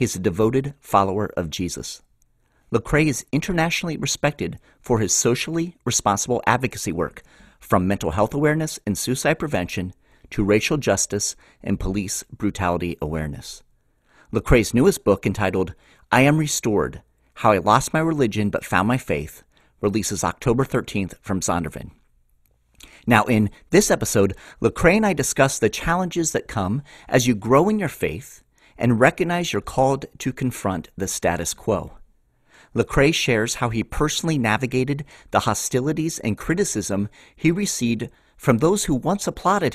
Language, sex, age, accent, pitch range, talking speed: English, male, 40-59, American, 100-145 Hz, 145 wpm